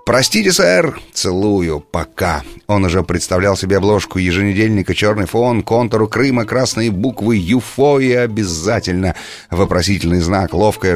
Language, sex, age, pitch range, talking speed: Russian, male, 30-49, 85-110 Hz, 120 wpm